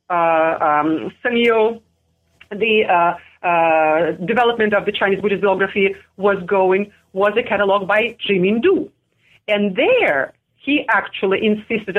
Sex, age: female, 40-59